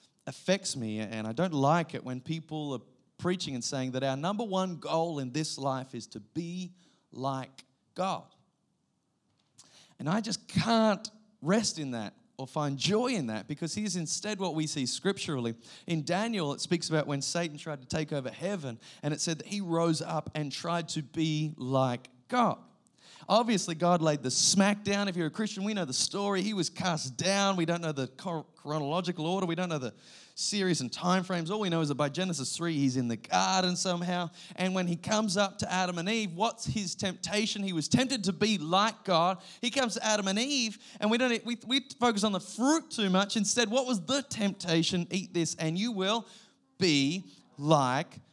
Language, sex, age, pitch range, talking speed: English, male, 30-49, 150-205 Hz, 200 wpm